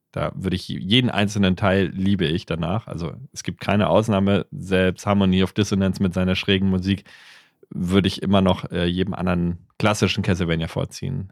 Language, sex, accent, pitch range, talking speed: German, male, German, 95-125 Hz, 170 wpm